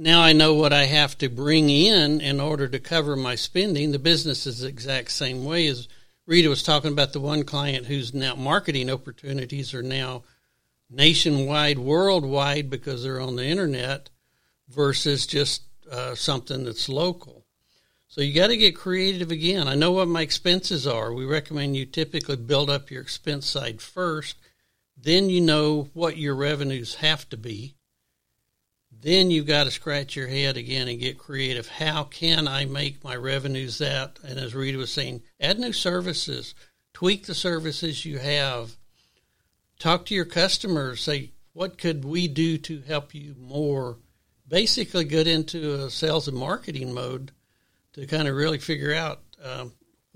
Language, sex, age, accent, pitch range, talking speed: English, male, 60-79, American, 130-160 Hz, 165 wpm